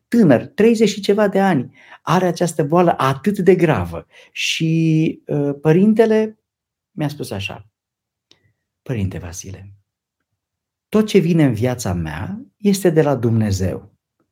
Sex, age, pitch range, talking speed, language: male, 50-69, 115-190 Hz, 120 wpm, Romanian